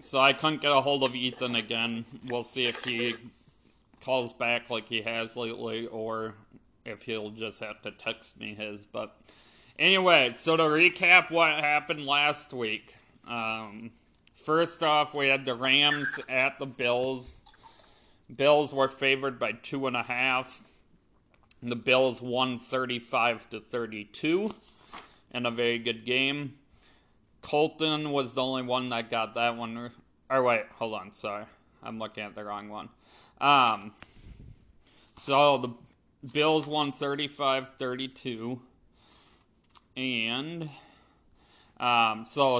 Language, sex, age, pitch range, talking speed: English, male, 30-49, 115-140 Hz, 135 wpm